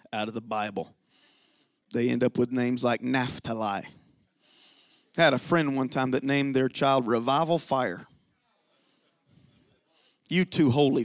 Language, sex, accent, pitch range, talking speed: English, male, American, 140-225 Hz, 140 wpm